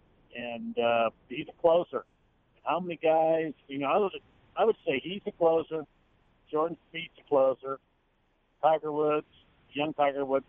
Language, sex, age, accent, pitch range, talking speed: English, male, 60-79, American, 135-165 Hz, 155 wpm